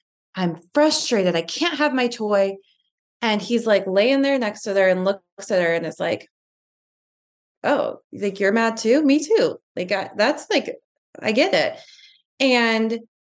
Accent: American